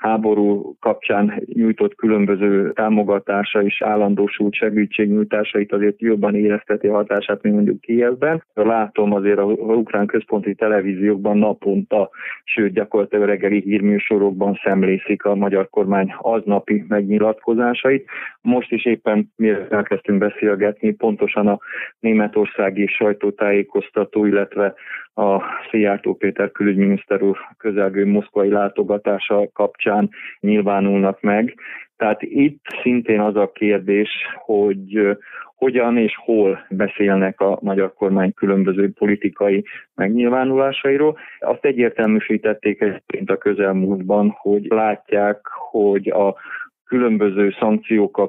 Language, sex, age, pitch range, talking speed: Hungarian, male, 20-39, 100-110 Hz, 105 wpm